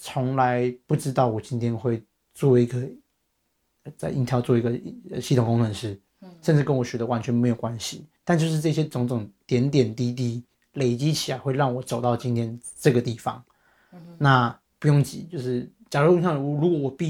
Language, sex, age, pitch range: Chinese, male, 30-49, 120-145 Hz